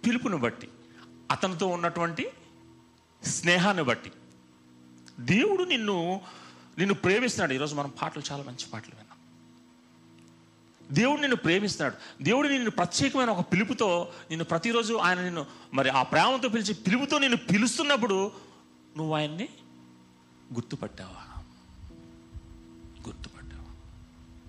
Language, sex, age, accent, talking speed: Telugu, male, 40-59, native, 100 wpm